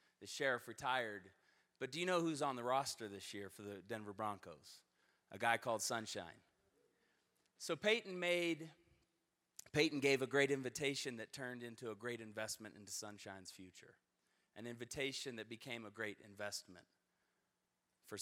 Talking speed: 150 wpm